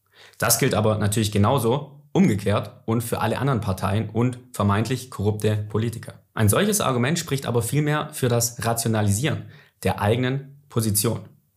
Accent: German